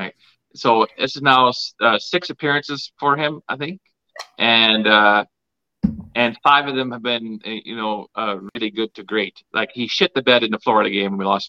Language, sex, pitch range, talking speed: English, male, 105-125 Hz, 195 wpm